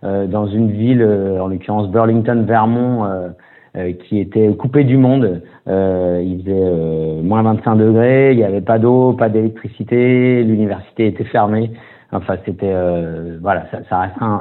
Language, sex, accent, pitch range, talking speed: French, male, French, 95-115 Hz, 165 wpm